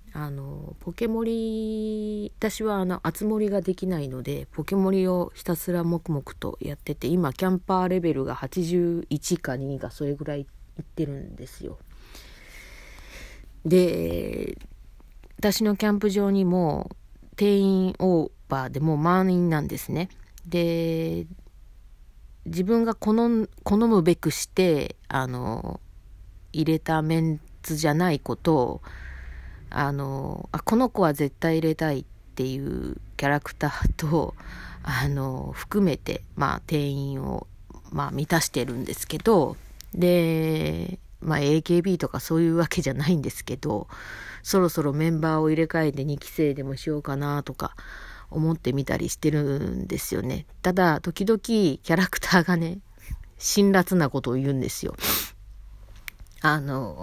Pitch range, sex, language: 140-180 Hz, female, Japanese